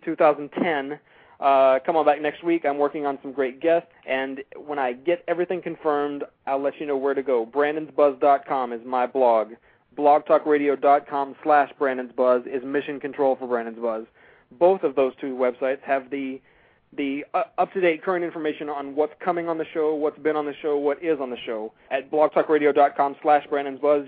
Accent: American